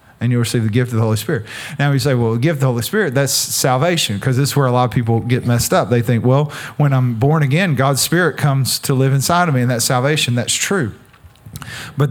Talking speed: 265 wpm